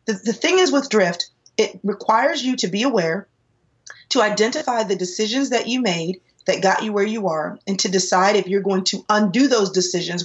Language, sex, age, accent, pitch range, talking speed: English, female, 30-49, American, 180-220 Hz, 205 wpm